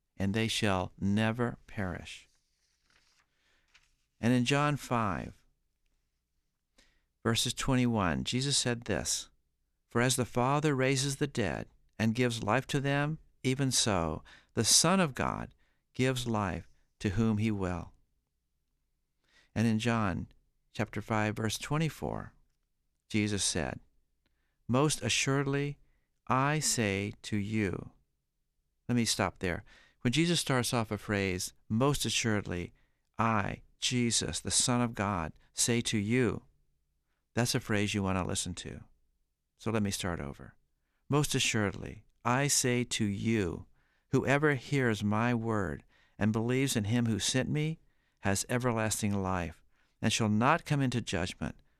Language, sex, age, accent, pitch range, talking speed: English, male, 50-69, American, 95-125 Hz, 130 wpm